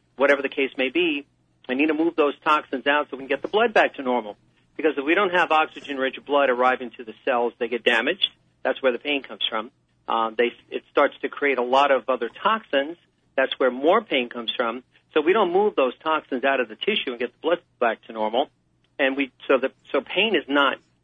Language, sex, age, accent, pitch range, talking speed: English, male, 40-59, American, 120-155 Hz, 235 wpm